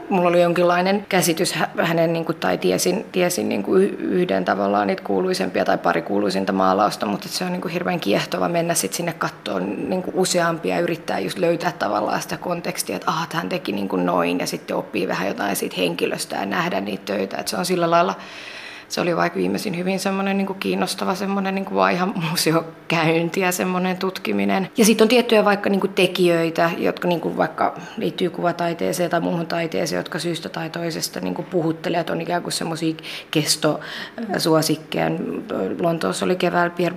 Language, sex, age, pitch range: Finnish, female, 20-39, 165-185 Hz